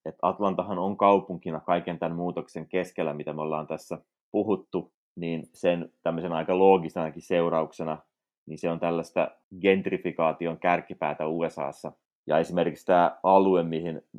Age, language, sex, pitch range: 30-49, Finnish, male, 80-90 Hz